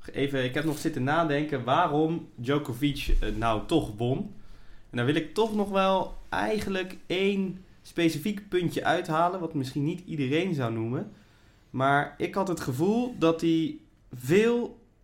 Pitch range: 130-170 Hz